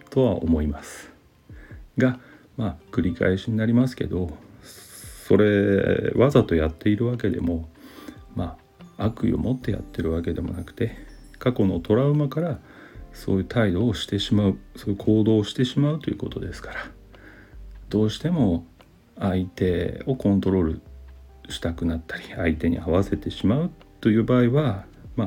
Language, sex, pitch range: Japanese, male, 85-110 Hz